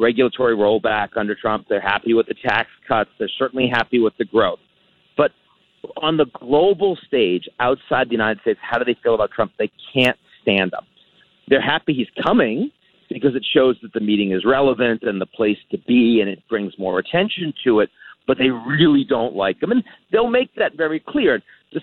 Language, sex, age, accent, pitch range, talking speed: English, male, 40-59, American, 125-155 Hz, 200 wpm